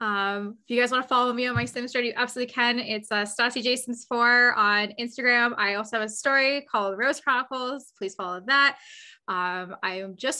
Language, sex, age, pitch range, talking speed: English, female, 20-39, 210-250 Hz, 215 wpm